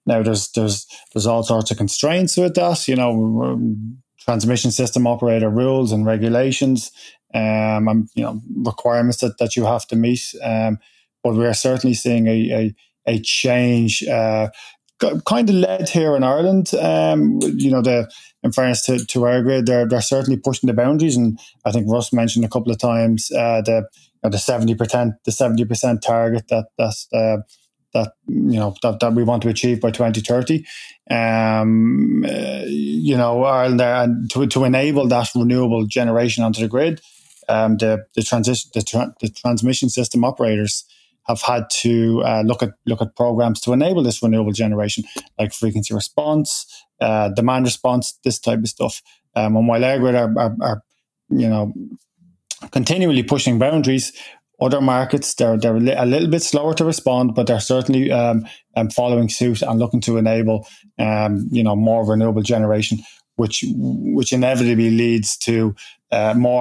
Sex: male